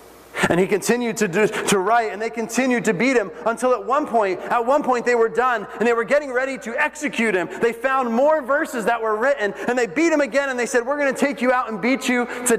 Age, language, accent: 30-49, English, American